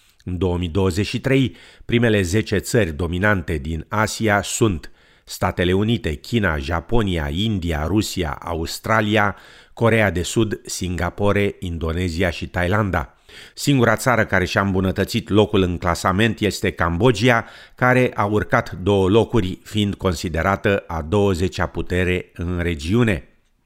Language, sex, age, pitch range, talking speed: Romanian, male, 50-69, 90-110 Hz, 115 wpm